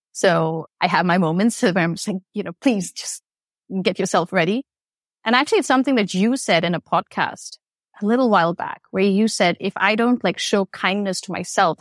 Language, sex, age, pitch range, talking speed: English, female, 30-49, 170-200 Hz, 210 wpm